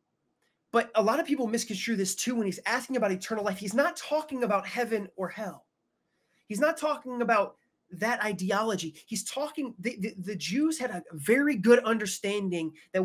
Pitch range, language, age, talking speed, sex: 190-245 Hz, English, 30-49, 180 wpm, male